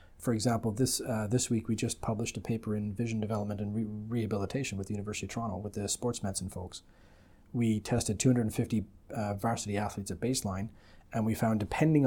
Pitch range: 100-120 Hz